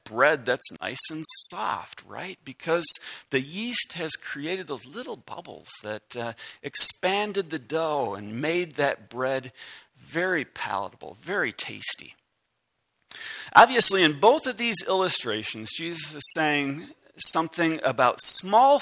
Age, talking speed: 50-69, 125 wpm